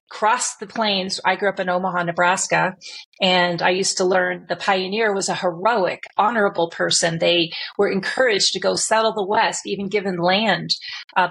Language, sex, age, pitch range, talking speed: English, female, 30-49, 180-215 Hz, 175 wpm